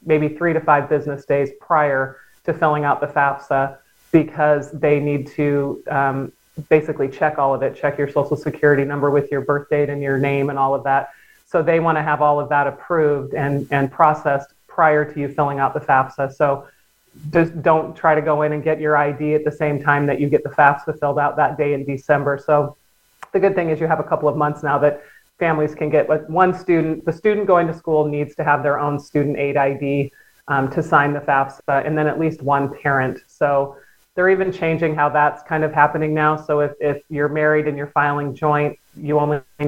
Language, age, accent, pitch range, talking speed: English, 30-49, American, 145-155 Hz, 220 wpm